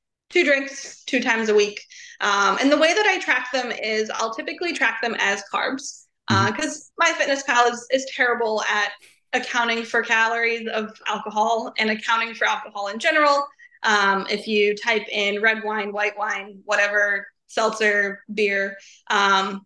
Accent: American